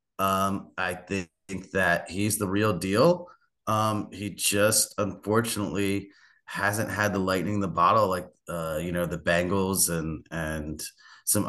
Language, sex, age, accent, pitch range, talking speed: English, male, 30-49, American, 90-105 Hz, 150 wpm